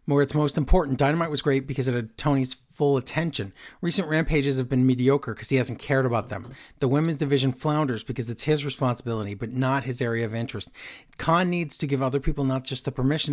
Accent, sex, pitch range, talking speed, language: American, male, 120-155 Hz, 215 wpm, English